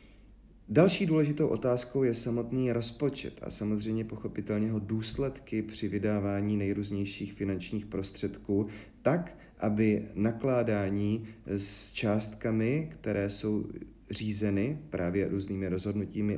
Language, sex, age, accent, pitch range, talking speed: Czech, male, 40-59, native, 100-125 Hz, 95 wpm